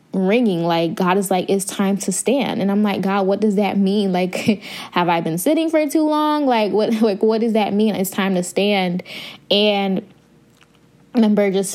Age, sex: 10-29, female